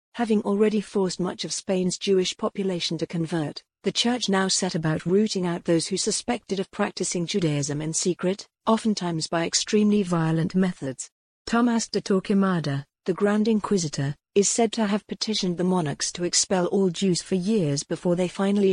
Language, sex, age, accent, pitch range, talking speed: English, female, 50-69, British, 170-205 Hz, 165 wpm